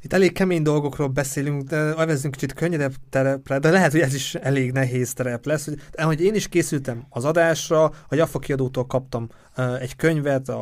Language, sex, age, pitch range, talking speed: Hungarian, male, 30-49, 130-155 Hz, 175 wpm